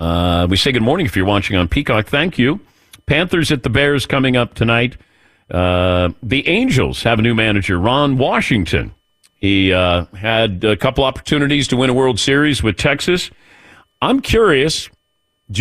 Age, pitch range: 50-69, 110-150 Hz